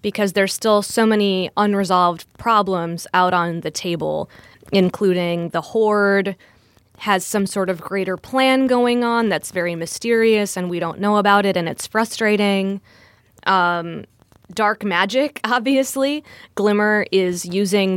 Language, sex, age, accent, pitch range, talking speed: English, female, 20-39, American, 175-220 Hz, 135 wpm